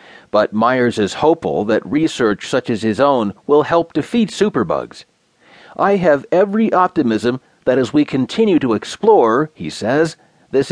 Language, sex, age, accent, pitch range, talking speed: English, male, 40-59, American, 120-170 Hz, 150 wpm